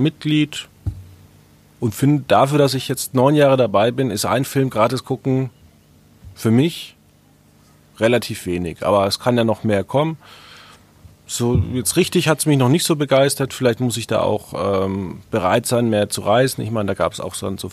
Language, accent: German, German